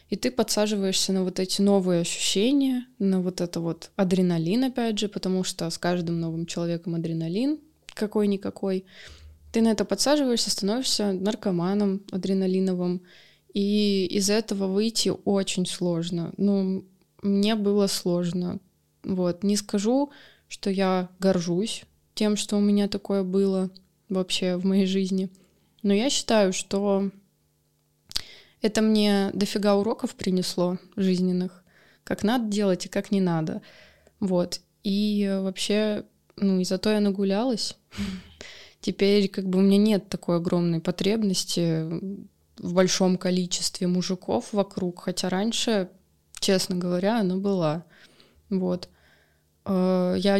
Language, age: Russian, 20-39